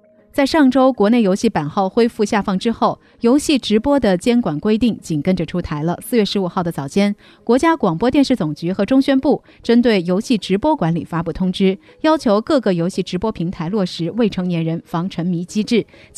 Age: 30-49